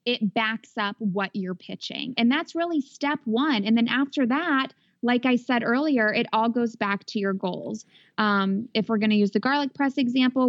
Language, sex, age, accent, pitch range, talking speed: English, female, 20-39, American, 205-255 Hz, 205 wpm